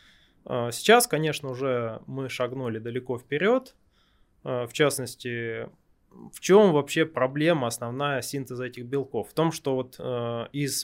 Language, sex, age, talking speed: Russian, male, 20-39, 120 wpm